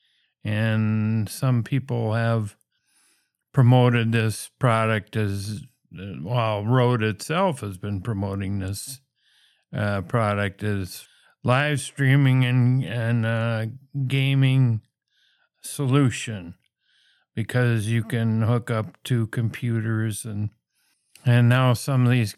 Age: 50-69